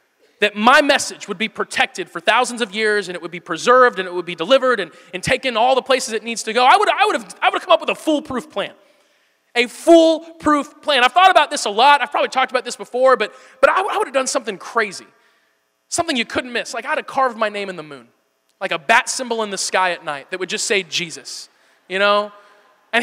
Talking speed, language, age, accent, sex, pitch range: 260 wpm, English, 20-39, American, male, 205-290 Hz